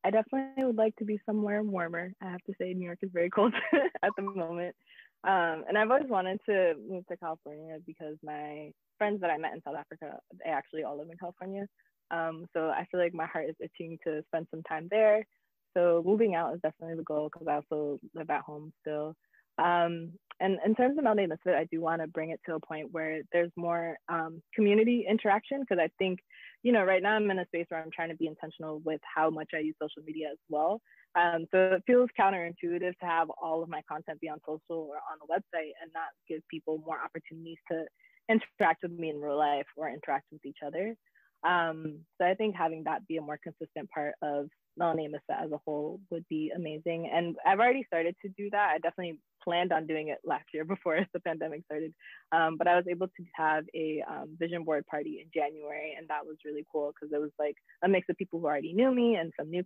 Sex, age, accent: female, 20-39, American